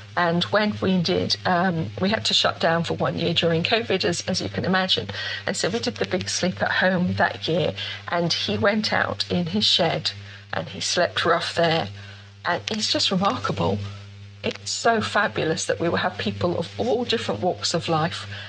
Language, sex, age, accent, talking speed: English, female, 50-69, British, 200 wpm